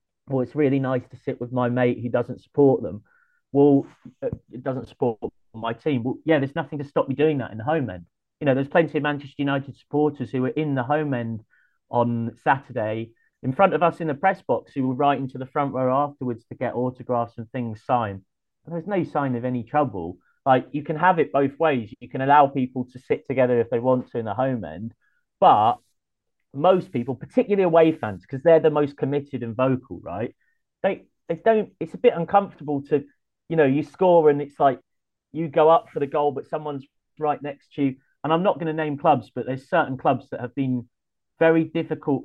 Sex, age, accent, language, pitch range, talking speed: male, 30-49, British, English, 120-150 Hz, 220 wpm